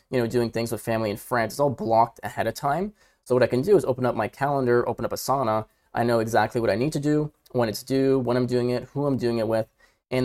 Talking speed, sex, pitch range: 285 wpm, male, 110-125 Hz